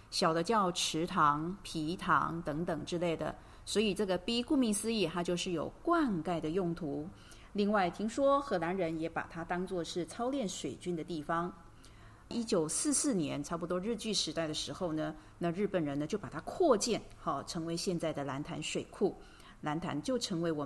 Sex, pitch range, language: female, 160-215 Hz, Chinese